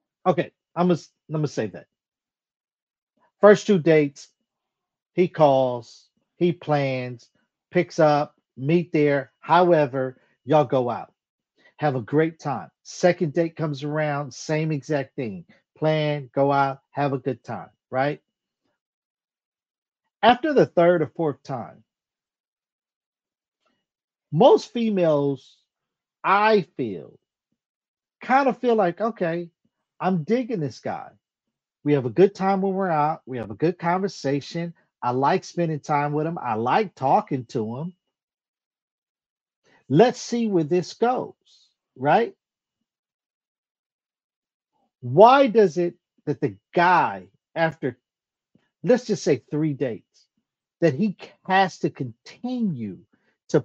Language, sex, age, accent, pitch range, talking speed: English, male, 50-69, American, 140-195 Hz, 120 wpm